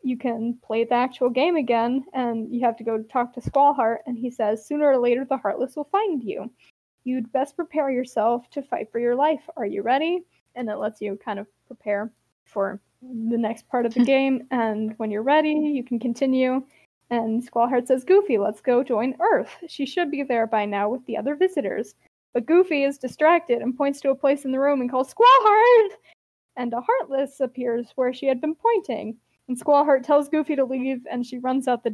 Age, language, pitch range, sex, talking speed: 20-39, English, 235-280 Hz, female, 210 wpm